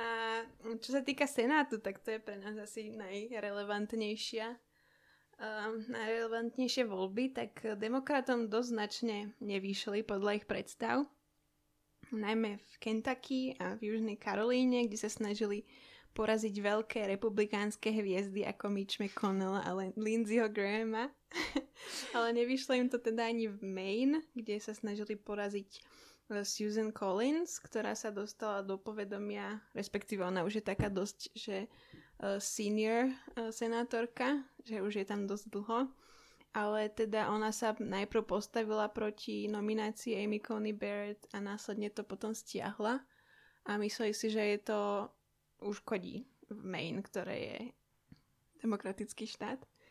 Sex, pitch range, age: female, 205-230 Hz, 10-29